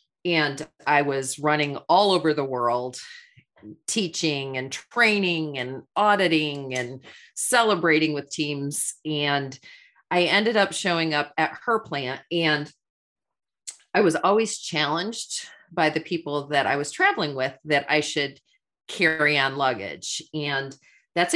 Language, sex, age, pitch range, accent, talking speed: English, female, 40-59, 140-180 Hz, American, 130 wpm